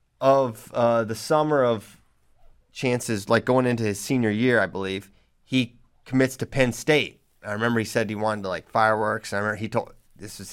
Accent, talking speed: American, 200 wpm